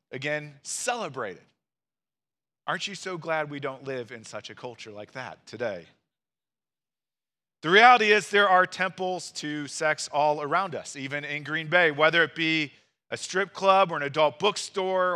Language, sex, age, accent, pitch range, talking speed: English, male, 40-59, American, 140-185 Hz, 165 wpm